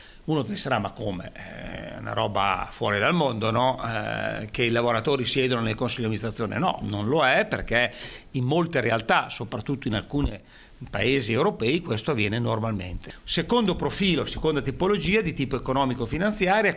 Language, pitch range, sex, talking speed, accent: Italian, 115-160 Hz, male, 150 wpm, native